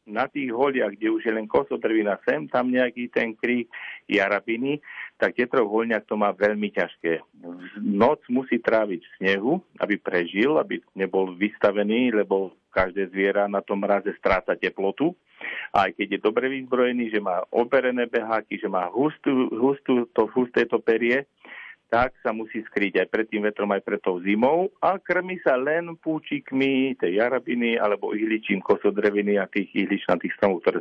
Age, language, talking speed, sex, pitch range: 50-69, Slovak, 165 wpm, male, 100-120 Hz